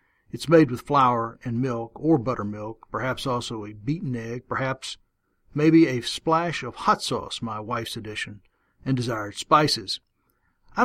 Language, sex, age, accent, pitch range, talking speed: English, male, 60-79, American, 115-150 Hz, 150 wpm